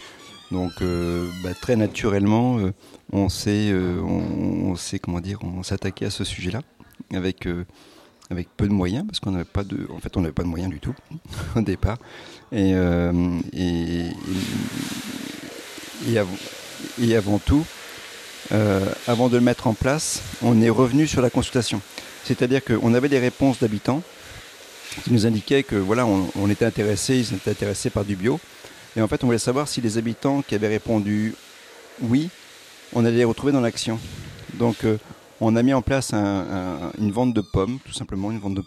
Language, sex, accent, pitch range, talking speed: French, male, French, 95-120 Hz, 180 wpm